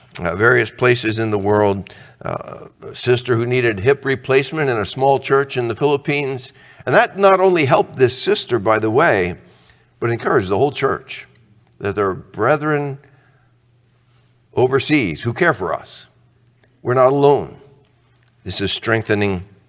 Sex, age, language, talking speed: male, 60-79, English, 150 wpm